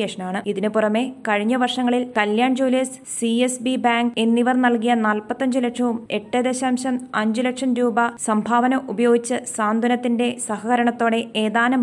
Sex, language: female, Malayalam